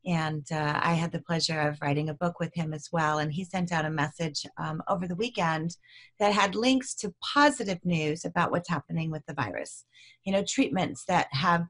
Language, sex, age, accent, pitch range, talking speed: English, female, 30-49, American, 165-205 Hz, 210 wpm